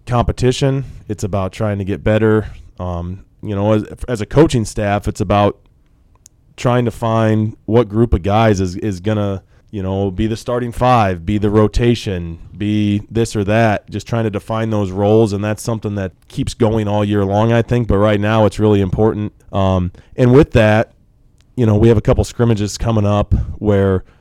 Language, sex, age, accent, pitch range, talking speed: English, male, 20-39, American, 95-110 Hz, 195 wpm